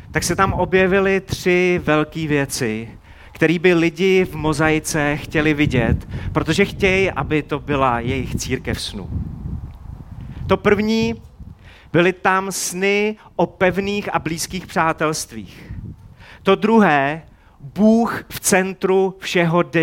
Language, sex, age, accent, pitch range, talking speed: Czech, male, 30-49, native, 145-195 Hz, 115 wpm